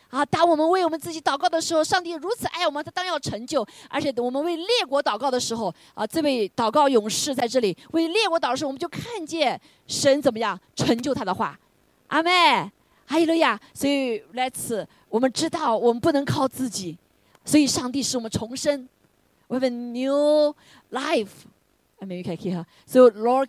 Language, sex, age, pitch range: Chinese, female, 20-39, 215-300 Hz